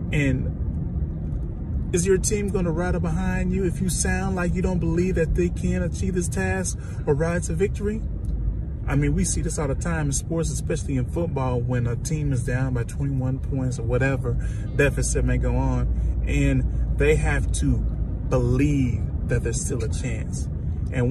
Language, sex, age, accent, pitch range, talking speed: English, male, 30-49, American, 90-135 Hz, 185 wpm